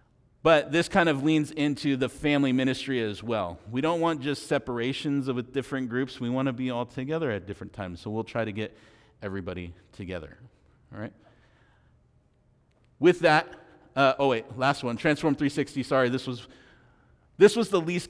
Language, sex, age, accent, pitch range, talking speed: English, male, 40-59, American, 115-145 Hz, 170 wpm